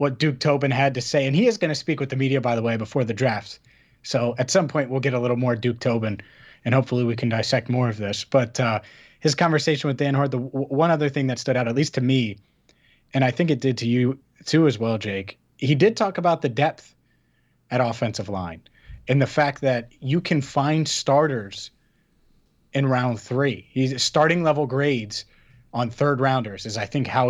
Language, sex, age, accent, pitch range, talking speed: English, male, 30-49, American, 115-140 Hz, 220 wpm